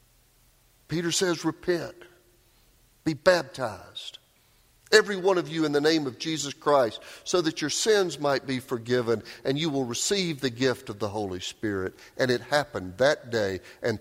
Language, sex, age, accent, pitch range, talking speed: English, male, 50-69, American, 125-195 Hz, 165 wpm